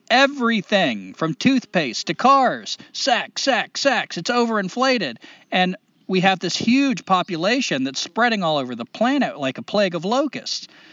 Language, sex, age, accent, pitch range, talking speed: English, male, 40-59, American, 145-245 Hz, 150 wpm